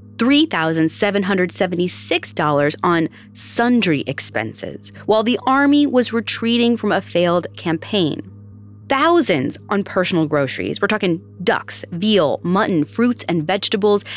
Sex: female